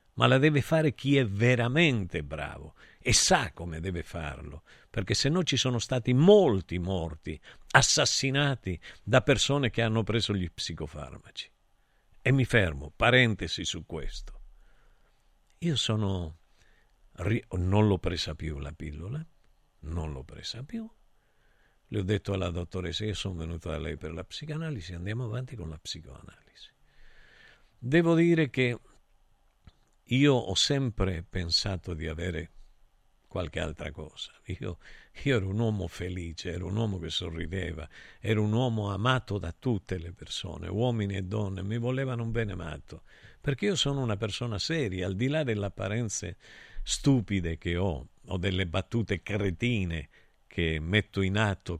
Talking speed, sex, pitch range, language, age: 145 wpm, male, 85-125 Hz, Italian, 50-69